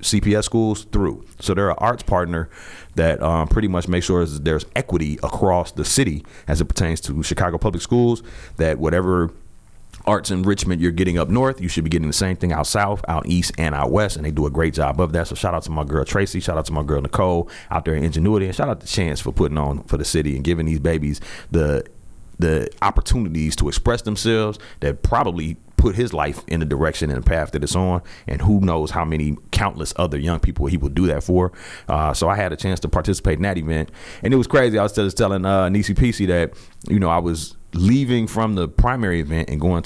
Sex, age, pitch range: male, 30-49, 80-105 Hz